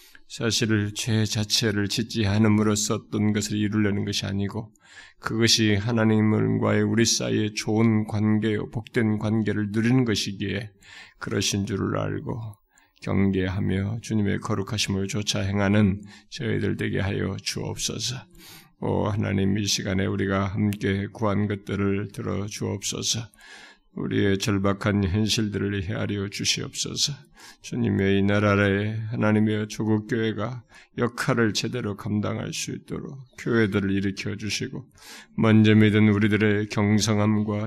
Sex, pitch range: male, 100-110 Hz